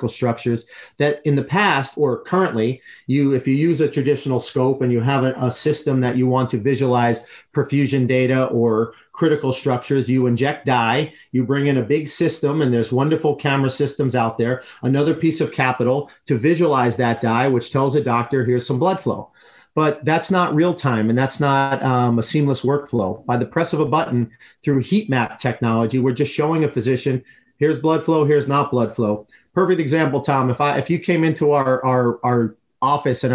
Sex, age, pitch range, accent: male, 40-59, 125-150 Hz, American